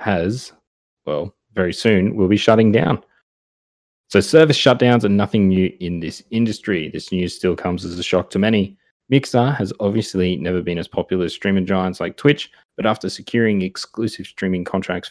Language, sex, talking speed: English, male, 175 wpm